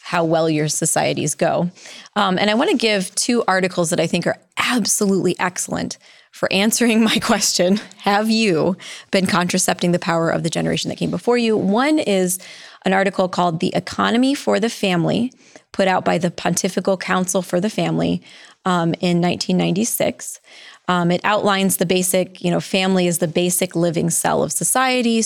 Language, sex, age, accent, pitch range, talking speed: English, female, 20-39, American, 175-205 Hz, 175 wpm